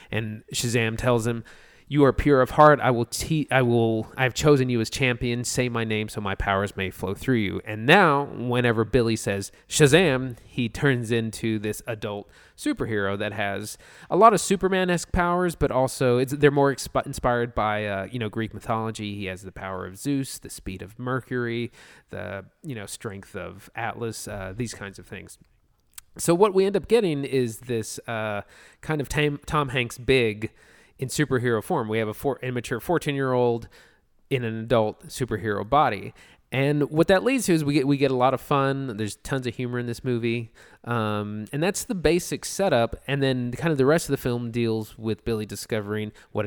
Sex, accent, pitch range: male, American, 105-135 Hz